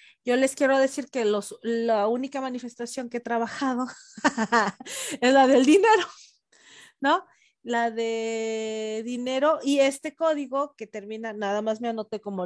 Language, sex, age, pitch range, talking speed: Spanish, female, 40-59, 225-295 Hz, 145 wpm